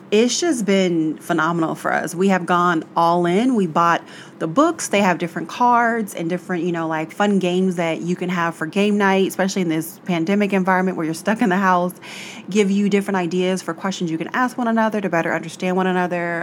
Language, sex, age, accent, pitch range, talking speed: English, female, 30-49, American, 170-200 Hz, 220 wpm